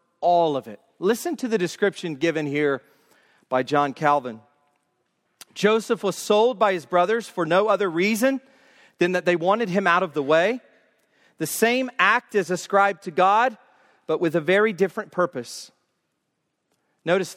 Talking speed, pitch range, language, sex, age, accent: 155 wpm, 170-225 Hz, English, male, 40-59, American